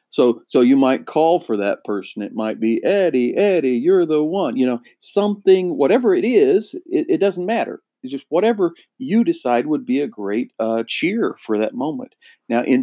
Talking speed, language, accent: 195 wpm, English, American